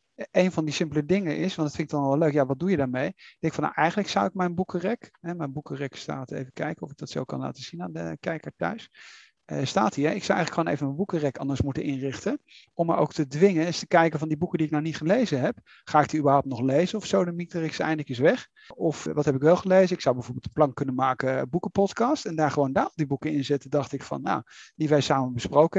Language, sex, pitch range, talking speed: Dutch, male, 140-165 Hz, 275 wpm